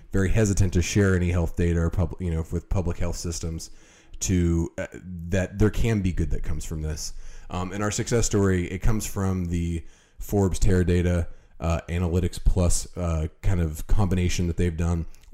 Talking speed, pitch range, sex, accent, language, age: 190 wpm, 85-95 Hz, male, American, English, 30-49